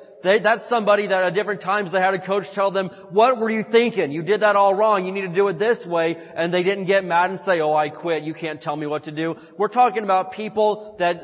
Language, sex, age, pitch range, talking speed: English, male, 30-49, 160-200 Hz, 265 wpm